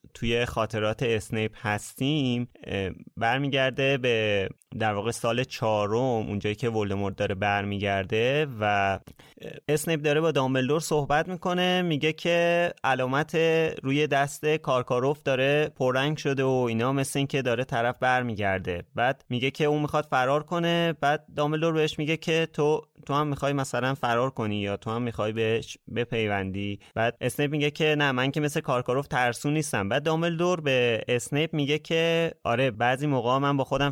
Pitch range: 115-150 Hz